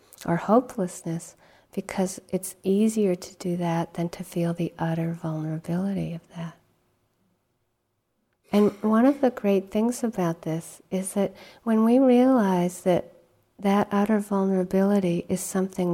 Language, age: English, 50-69